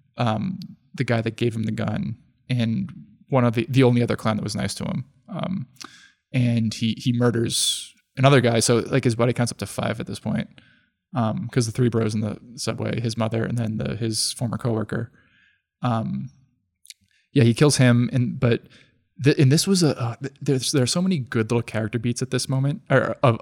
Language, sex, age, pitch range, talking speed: English, male, 20-39, 110-125 Hz, 210 wpm